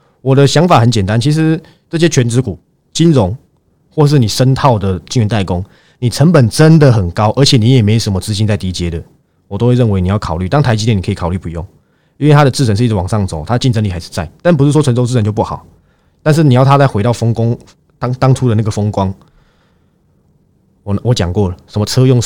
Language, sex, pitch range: Chinese, male, 95-135 Hz